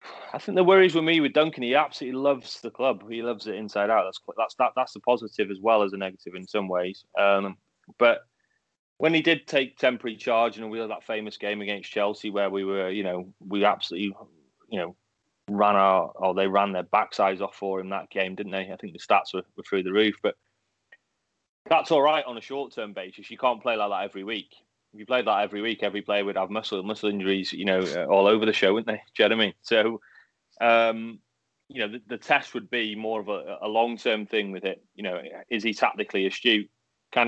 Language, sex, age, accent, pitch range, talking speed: English, male, 20-39, British, 100-120 Hz, 235 wpm